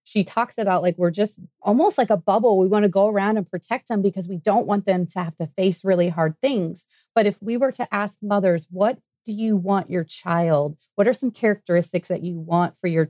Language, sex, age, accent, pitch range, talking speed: English, female, 30-49, American, 175-215 Hz, 240 wpm